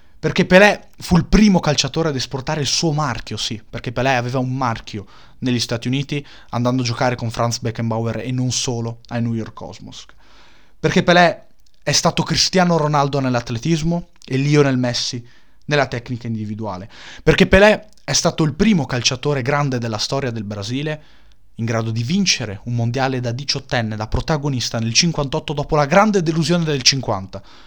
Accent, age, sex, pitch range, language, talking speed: native, 20-39, male, 115-150 Hz, Italian, 165 wpm